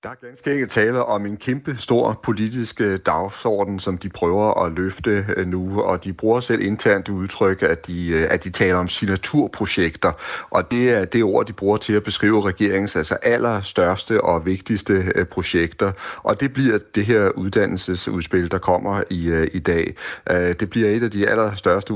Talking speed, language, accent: 170 wpm, Danish, native